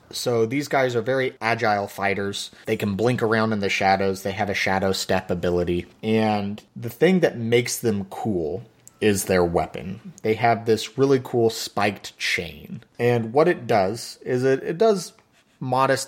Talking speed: 170 wpm